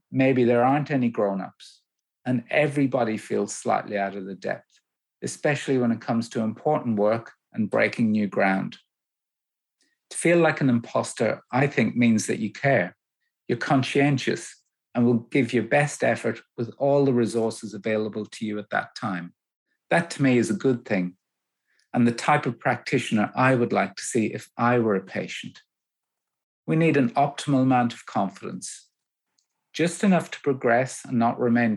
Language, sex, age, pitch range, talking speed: English, male, 50-69, 110-140 Hz, 170 wpm